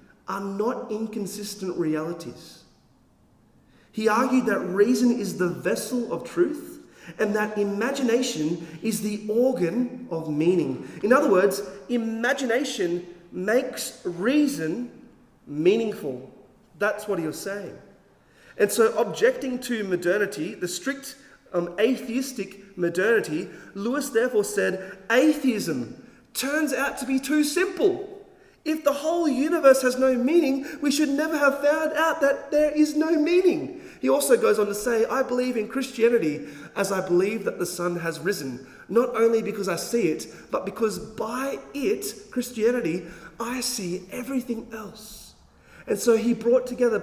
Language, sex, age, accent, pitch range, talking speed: English, male, 30-49, Australian, 200-270 Hz, 140 wpm